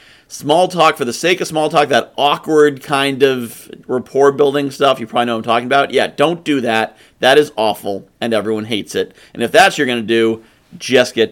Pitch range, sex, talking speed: 130-185 Hz, male, 215 wpm